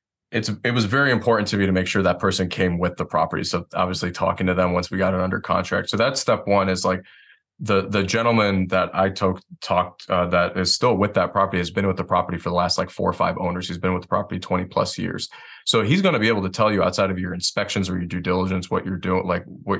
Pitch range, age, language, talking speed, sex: 90-105 Hz, 20-39, English, 275 wpm, male